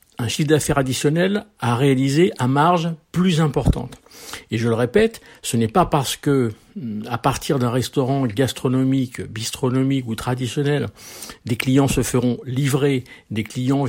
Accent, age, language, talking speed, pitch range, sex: French, 50-69, French, 145 wpm, 115-145 Hz, male